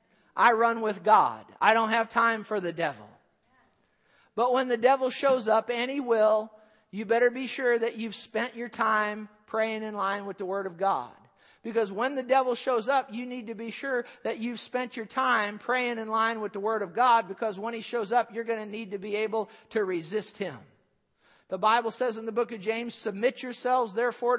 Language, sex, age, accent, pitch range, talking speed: English, male, 50-69, American, 215-250 Hz, 215 wpm